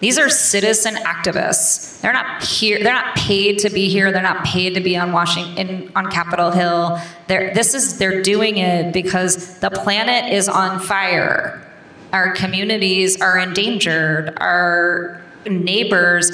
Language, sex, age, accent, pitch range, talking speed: English, female, 30-49, American, 175-200 Hz, 155 wpm